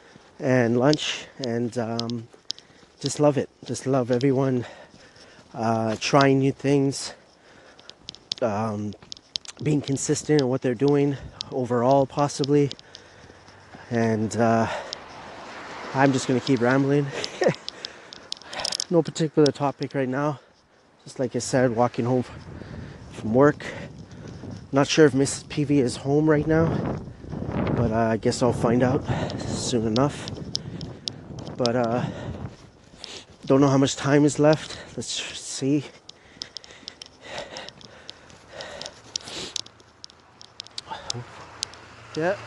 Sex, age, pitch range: male, 30-49, 120-145 Hz